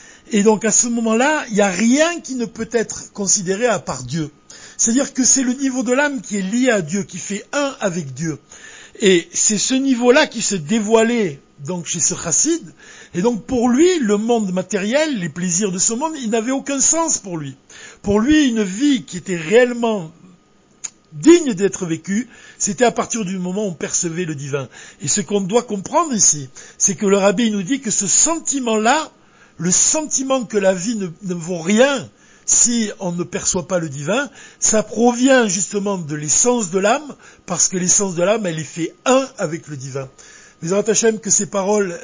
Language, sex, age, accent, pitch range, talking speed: French, male, 60-79, French, 175-235 Hz, 195 wpm